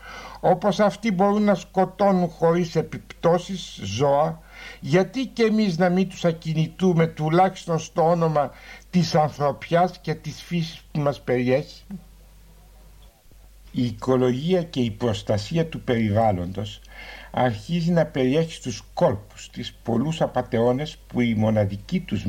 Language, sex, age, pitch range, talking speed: Greek, male, 60-79, 120-170 Hz, 120 wpm